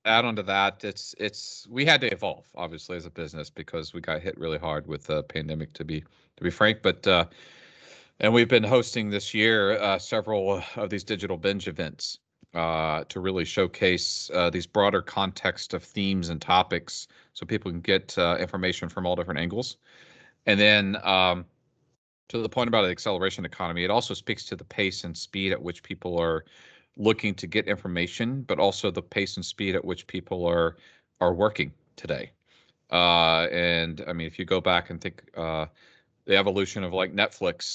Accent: American